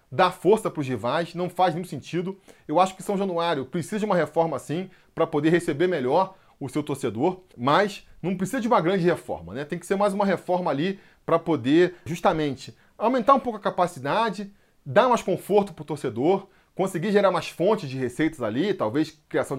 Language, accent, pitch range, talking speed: Portuguese, Brazilian, 145-200 Hz, 195 wpm